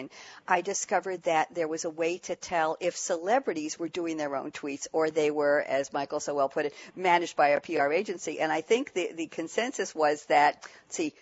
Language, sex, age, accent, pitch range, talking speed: English, female, 50-69, American, 160-210 Hz, 210 wpm